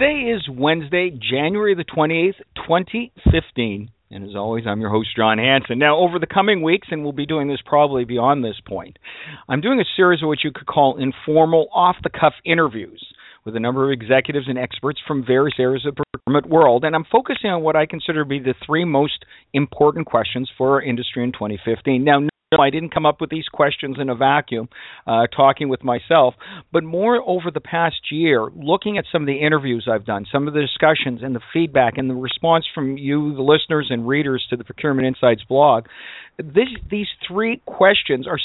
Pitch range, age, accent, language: 130-165 Hz, 50-69, American, English